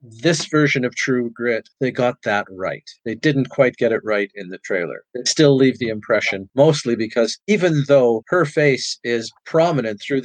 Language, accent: English, American